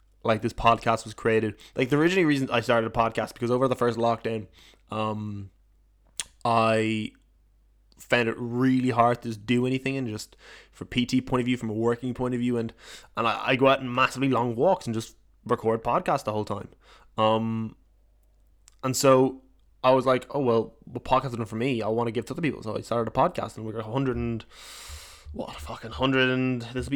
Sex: male